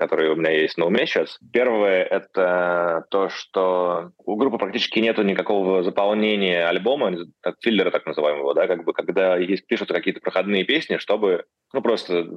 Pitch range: 85-100 Hz